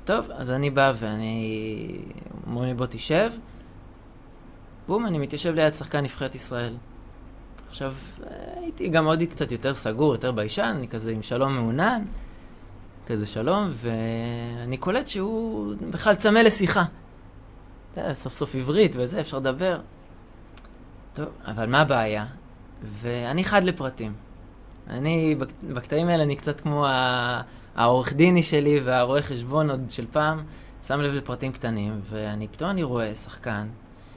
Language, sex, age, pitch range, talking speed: Hebrew, male, 20-39, 110-145 Hz, 130 wpm